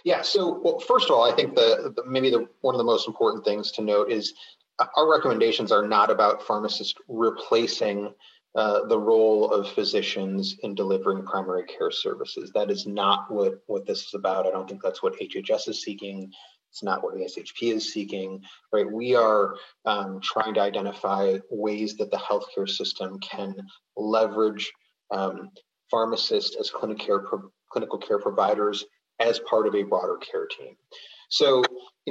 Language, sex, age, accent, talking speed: English, male, 30-49, American, 175 wpm